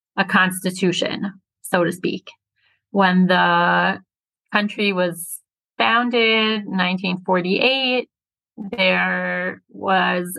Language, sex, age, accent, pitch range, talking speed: English, female, 30-49, American, 180-210 Hz, 75 wpm